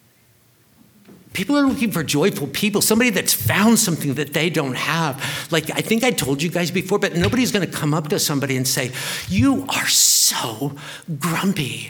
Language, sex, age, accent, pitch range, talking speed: English, male, 50-69, American, 140-195 Hz, 180 wpm